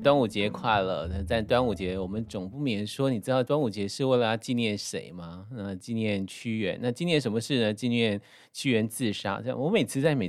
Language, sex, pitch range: Chinese, male, 95-130 Hz